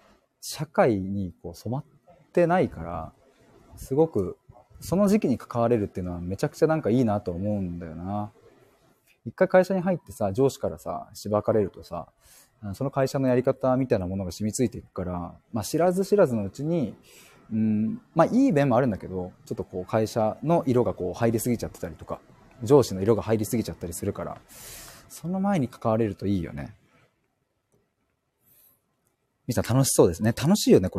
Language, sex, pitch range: Japanese, male, 95-155 Hz